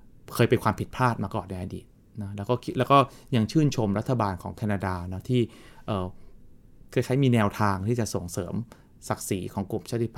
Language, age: Thai, 20-39